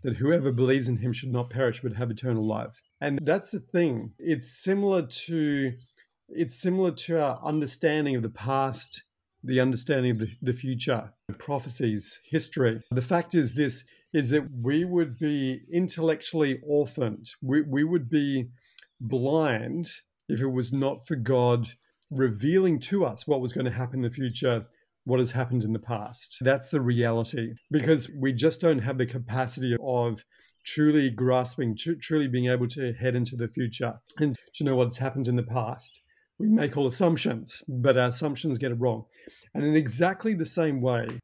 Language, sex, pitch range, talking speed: English, male, 125-150 Hz, 175 wpm